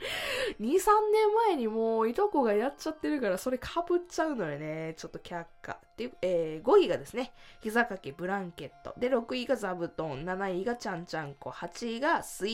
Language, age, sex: Japanese, 20-39, female